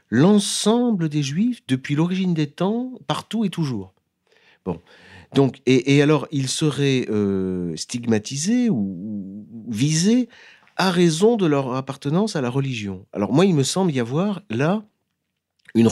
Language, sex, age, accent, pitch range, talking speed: French, male, 40-59, French, 100-160 Hz, 145 wpm